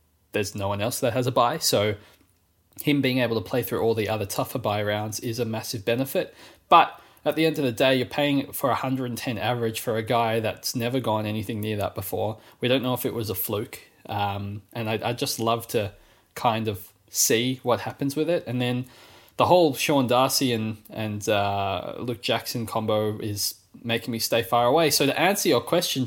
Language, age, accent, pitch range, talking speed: English, 20-39, Australian, 110-135 Hz, 210 wpm